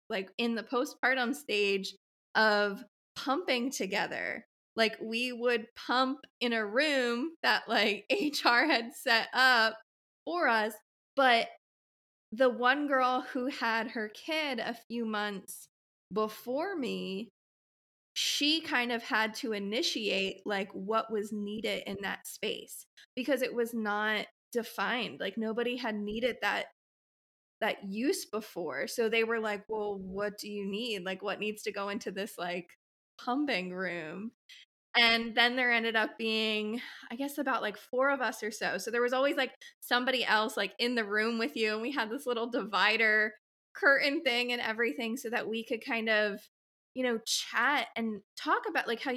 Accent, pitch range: American, 215-255 Hz